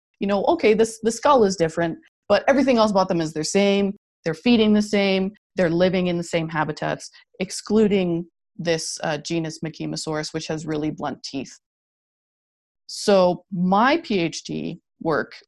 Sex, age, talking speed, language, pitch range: female, 30-49, 150 wpm, English, 160-215 Hz